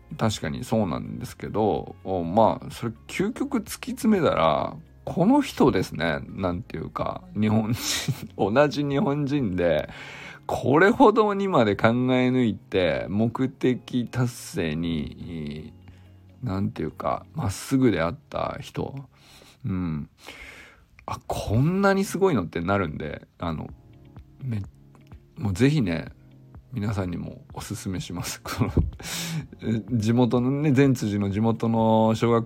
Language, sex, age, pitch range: Japanese, male, 50-69, 95-135 Hz